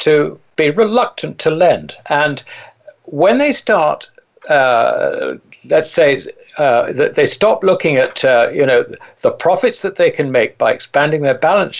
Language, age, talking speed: English, 60-79, 155 wpm